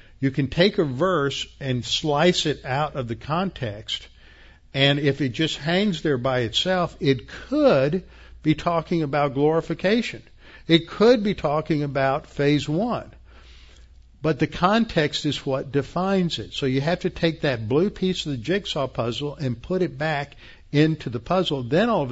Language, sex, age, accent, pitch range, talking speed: English, male, 50-69, American, 120-155 Hz, 170 wpm